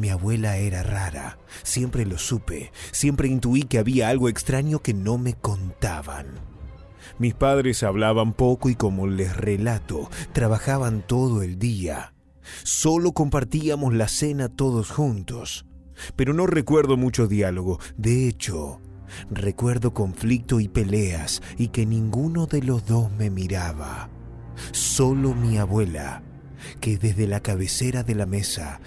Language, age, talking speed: Spanish, 30-49, 135 wpm